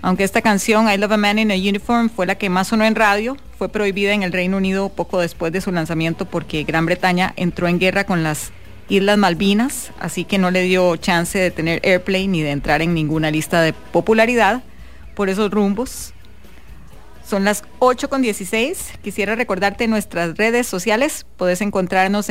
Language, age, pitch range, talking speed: English, 30-49, 180-210 Hz, 190 wpm